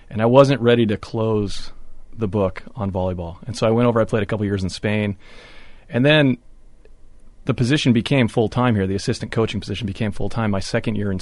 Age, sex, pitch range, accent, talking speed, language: 30-49, male, 100-115 Hz, American, 210 wpm, English